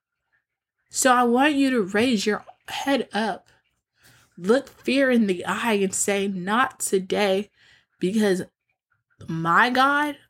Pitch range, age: 180-230 Hz, 10-29